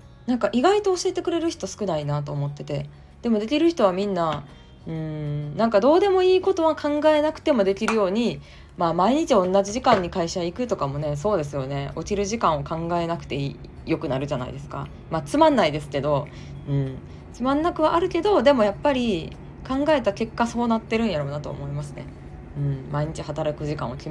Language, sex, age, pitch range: Japanese, female, 20-39, 145-230 Hz